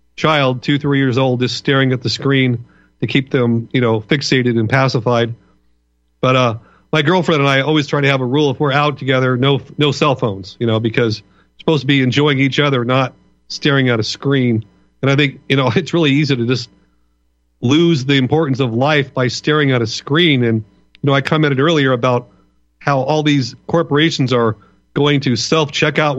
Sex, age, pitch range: male, 40-59, 125-150 Hz